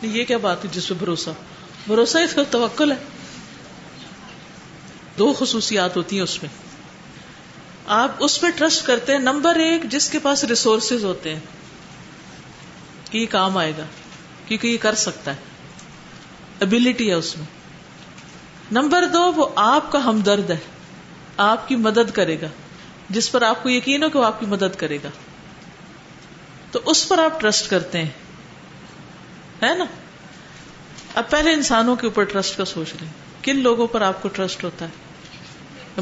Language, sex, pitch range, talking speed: Urdu, female, 185-250 Hz, 155 wpm